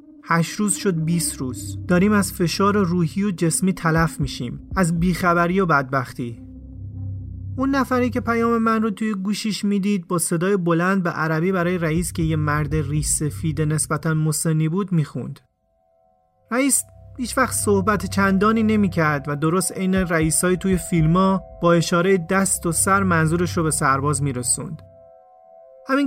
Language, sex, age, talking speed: Persian, male, 30-49, 150 wpm